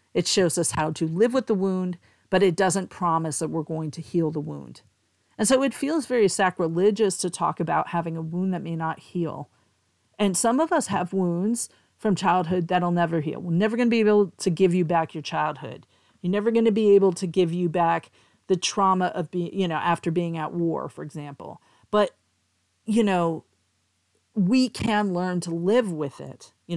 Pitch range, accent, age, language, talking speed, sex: 160-195 Hz, American, 40-59, English, 205 wpm, female